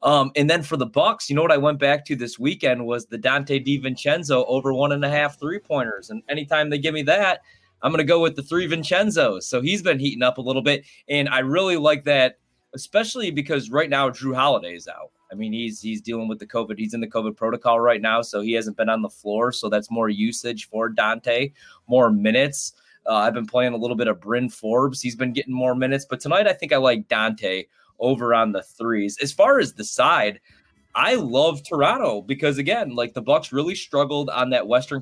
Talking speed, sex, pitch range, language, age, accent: 230 wpm, male, 115-145 Hz, English, 20-39, American